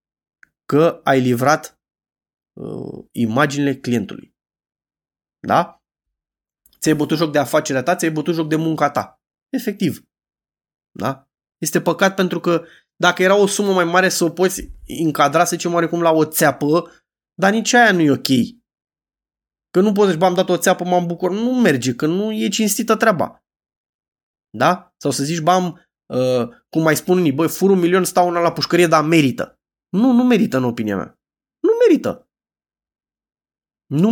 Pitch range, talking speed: 150-190 Hz, 160 wpm